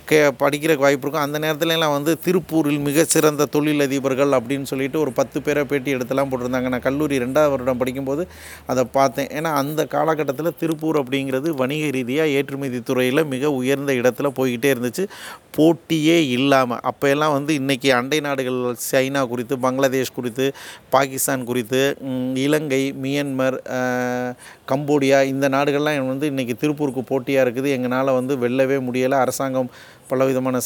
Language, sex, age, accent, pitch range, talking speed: Tamil, male, 30-49, native, 130-150 Hz, 130 wpm